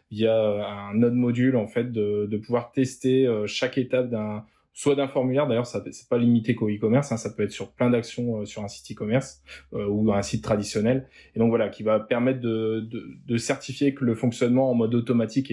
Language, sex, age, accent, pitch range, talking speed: French, male, 20-39, French, 110-125 Hz, 225 wpm